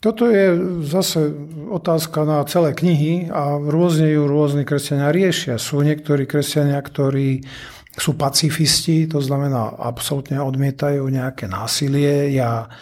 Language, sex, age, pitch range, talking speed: Slovak, male, 50-69, 135-155 Hz, 120 wpm